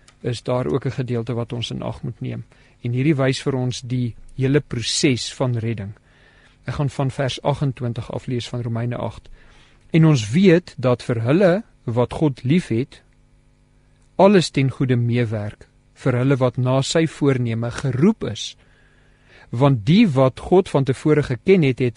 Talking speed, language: 165 wpm, English